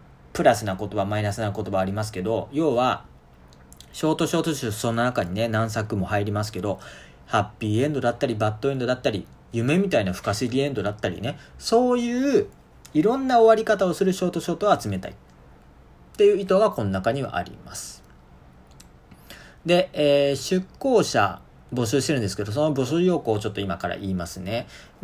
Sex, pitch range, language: male, 100-155 Hz, Japanese